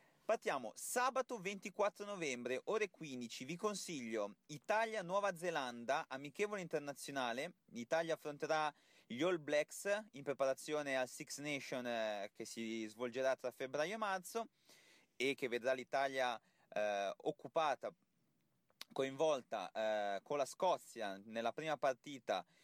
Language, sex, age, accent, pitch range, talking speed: Italian, male, 30-49, native, 130-180 Hz, 115 wpm